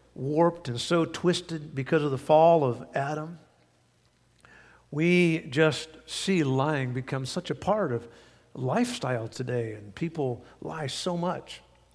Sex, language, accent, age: male, English, American, 50-69